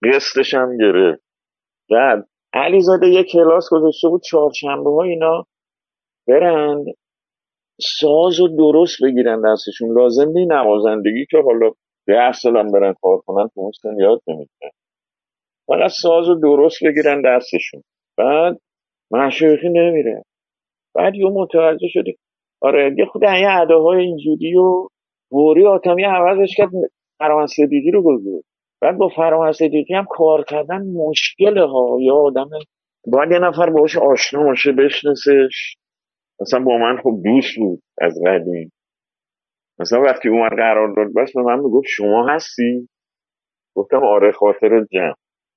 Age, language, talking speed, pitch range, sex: 50-69, Persian, 130 wpm, 130-185 Hz, male